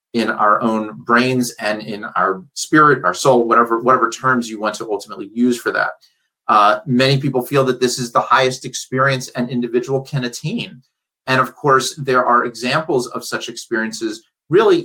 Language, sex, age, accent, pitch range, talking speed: English, male, 30-49, American, 115-130 Hz, 180 wpm